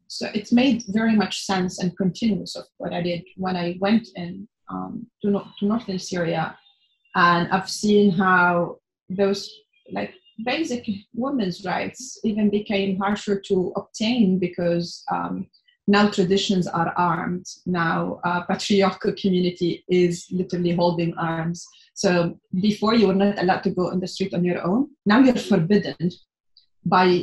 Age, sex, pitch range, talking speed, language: 30-49, female, 180-215 Hz, 150 wpm, English